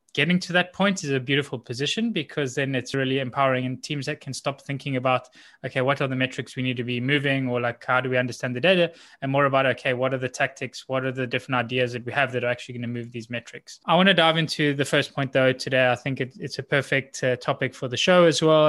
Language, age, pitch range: English, 20-39, 125-150 Hz